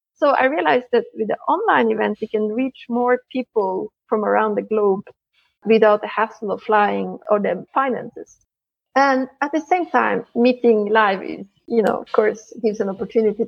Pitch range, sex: 215-260 Hz, female